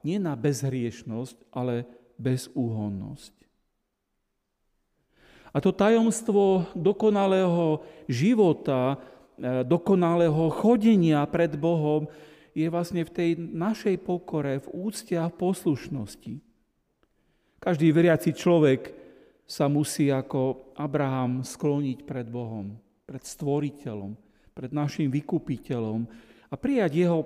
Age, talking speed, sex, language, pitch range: 40-59, 90 wpm, male, Slovak, 125-170 Hz